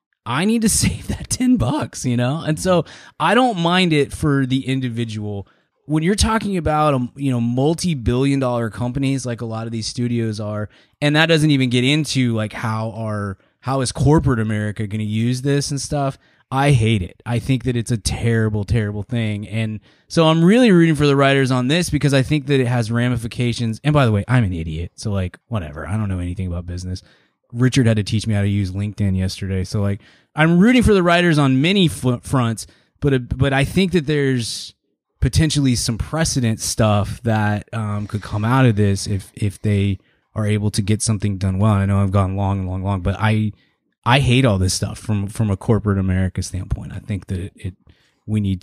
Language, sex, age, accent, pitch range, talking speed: English, male, 20-39, American, 100-135 Hz, 210 wpm